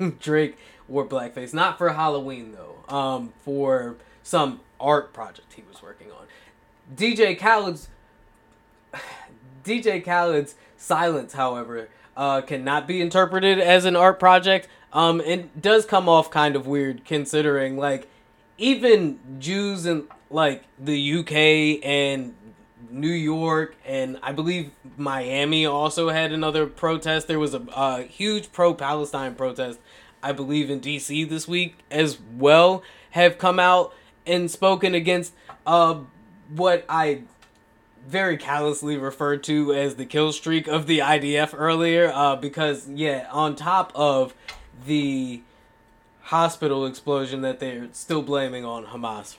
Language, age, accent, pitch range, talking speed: English, 20-39, American, 135-165 Hz, 130 wpm